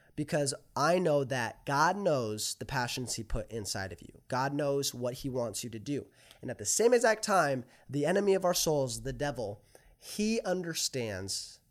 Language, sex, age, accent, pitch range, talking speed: English, male, 20-39, American, 115-150 Hz, 185 wpm